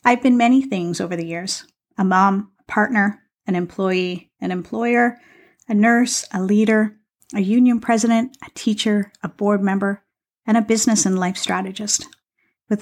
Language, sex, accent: English, female, American